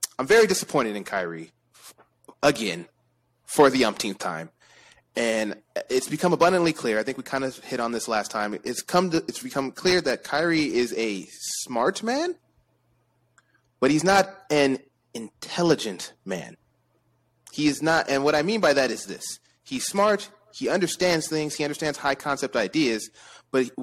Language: English